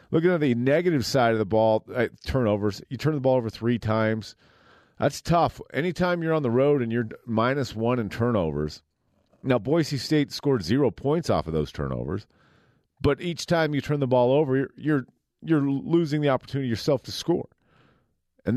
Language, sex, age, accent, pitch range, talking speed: English, male, 40-59, American, 105-140 Hz, 185 wpm